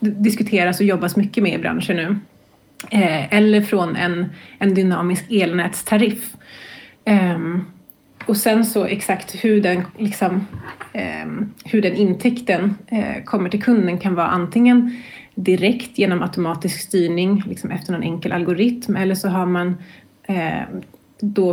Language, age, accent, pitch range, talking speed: Swedish, 30-49, native, 180-205 Hz, 115 wpm